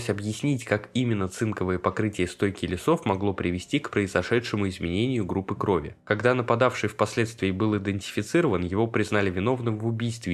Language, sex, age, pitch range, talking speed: Russian, male, 20-39, 95-120 Hz, 140 wpm